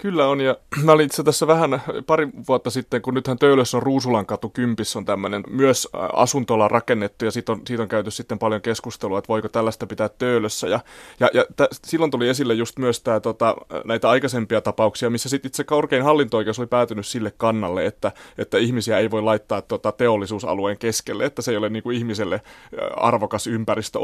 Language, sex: Finnish, male